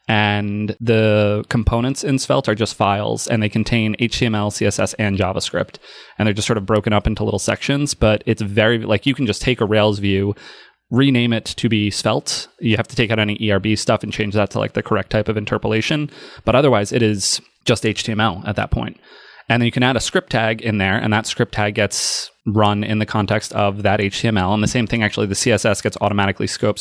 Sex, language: male, English